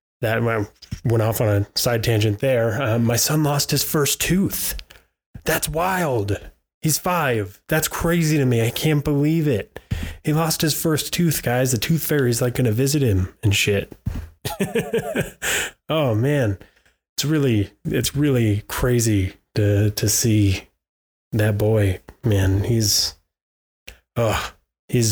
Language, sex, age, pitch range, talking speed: English, male, 20-39, 100-125 Hz, 140 wpm